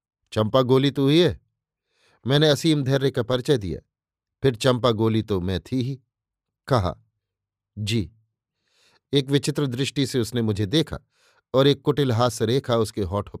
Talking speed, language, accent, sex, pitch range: 150 wpm, Hindi, native, male, 110-140 Hz